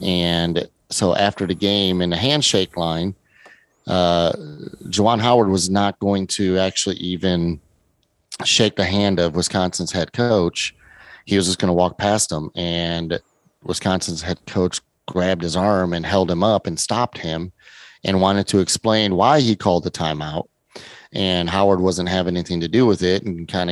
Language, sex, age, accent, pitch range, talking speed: English, male, 30-49, American, 85-100 Hz, 170 wpm